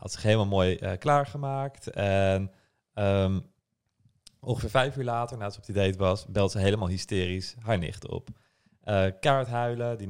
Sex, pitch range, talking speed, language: male, 100-125 Hz, 170 wpm, Dutch